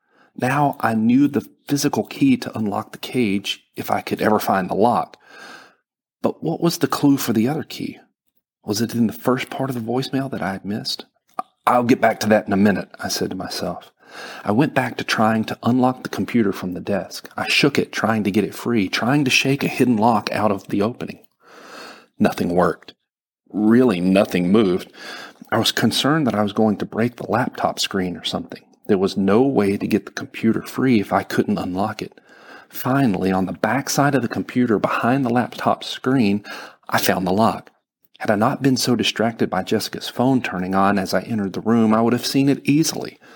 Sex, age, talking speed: male, 40-59, 210 wpm